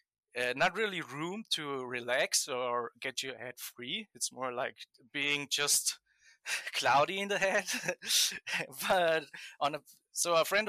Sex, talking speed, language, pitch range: male, 145 wpm, English, 130-180 Hz